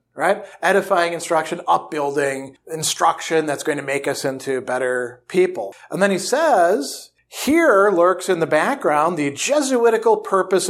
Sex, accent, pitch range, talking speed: male, American, 145-190 Hz, 140 wpm